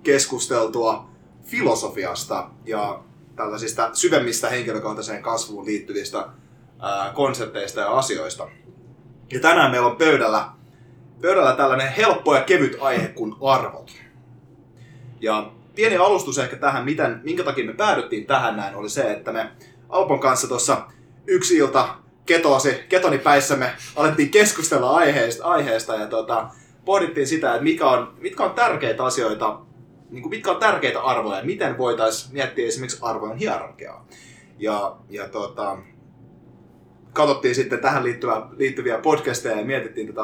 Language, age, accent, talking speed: Finnish, 20-39, native, 125 wpm